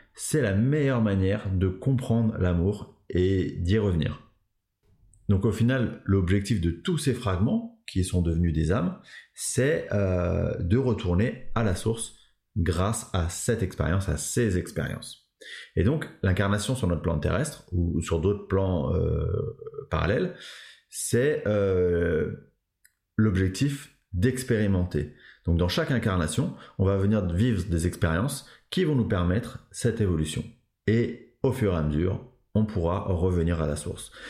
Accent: French